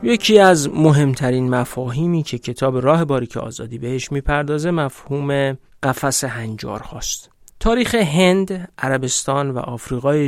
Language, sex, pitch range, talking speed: Persian, male, 125-155 Hz, 110 wpm